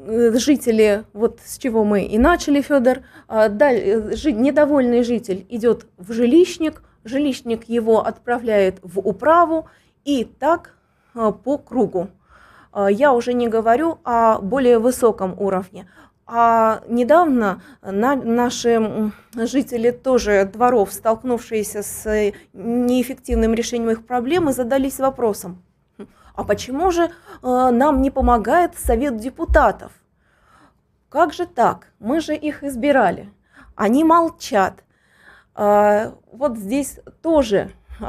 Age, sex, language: 20-39, female, Russian